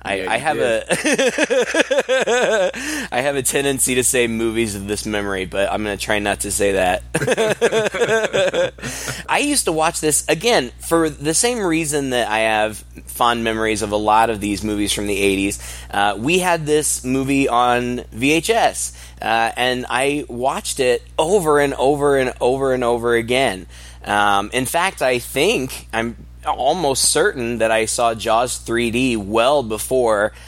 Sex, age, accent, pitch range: male, 20-39, American, 105-135 Hz